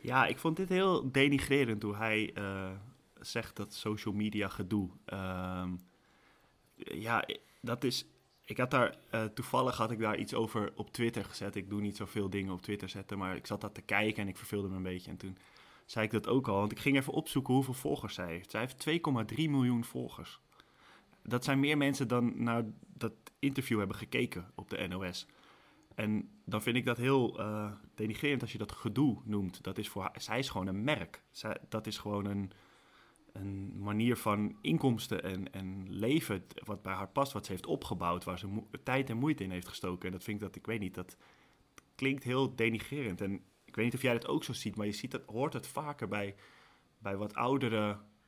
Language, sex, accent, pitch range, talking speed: Dutch, male, Dutch, 100-120 Hz, 205 wpm